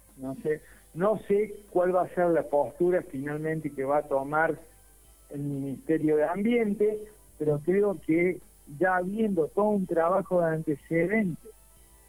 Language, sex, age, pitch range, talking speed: Spanish, male, 60-79, 145-190 Hz, 145 wpm